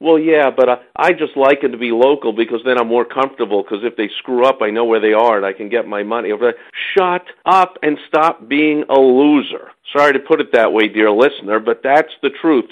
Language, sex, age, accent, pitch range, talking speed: English, male, 50-69, American, 125-185 Hz, 240 wpm